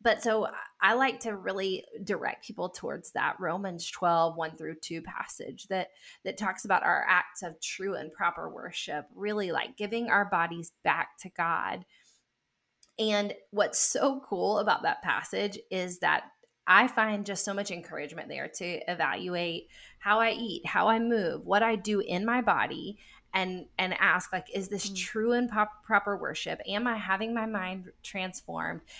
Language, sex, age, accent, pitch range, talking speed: English, female, 20-39, American, 185-230 Hz, 170 wpm